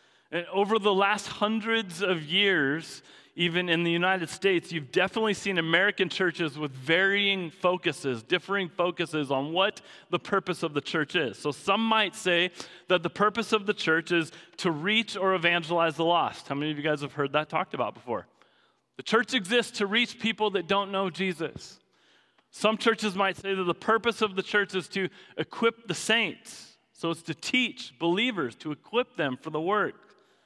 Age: 30-49